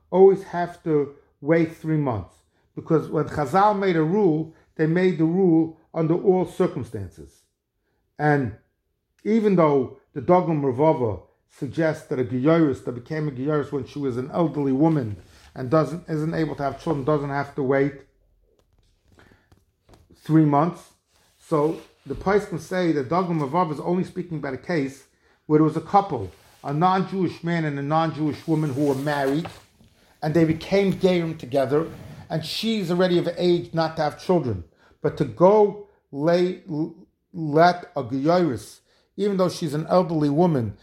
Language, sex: English, male